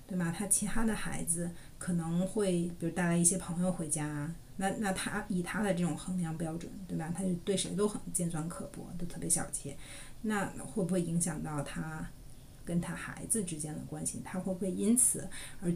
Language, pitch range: Chinese, 155-185 Hz